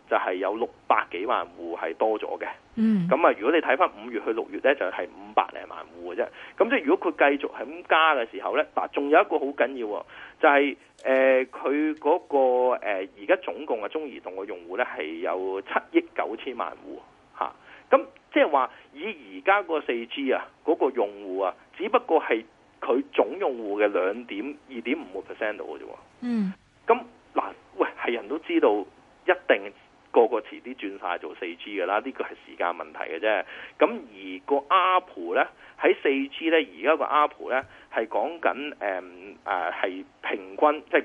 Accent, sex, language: native, male, Chinese